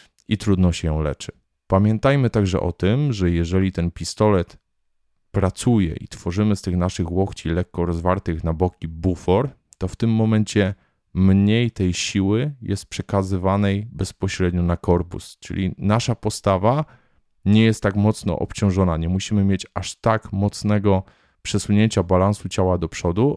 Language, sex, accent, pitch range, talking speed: Polish, male, native, 90-105 Hz, 145 wpm